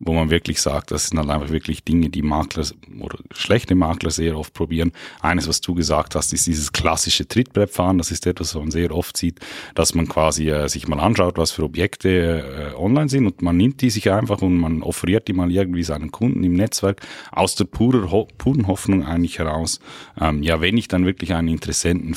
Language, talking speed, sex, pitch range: German, 215 wpm, male, 80-95 Hz